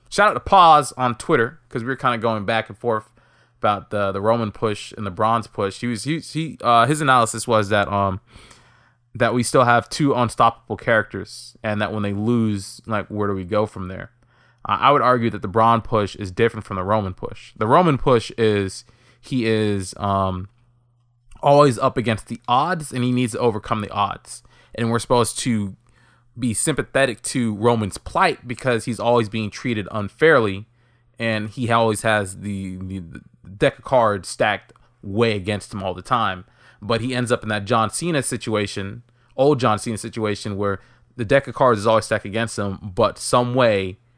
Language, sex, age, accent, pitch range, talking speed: English, male, 20-39, American, 105-120 Hz, 195 wpm